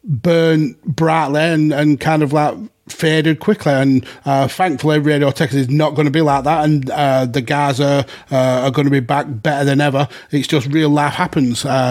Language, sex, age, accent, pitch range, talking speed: English, male, 30-49, British, 135-160 Hz, 200 wpm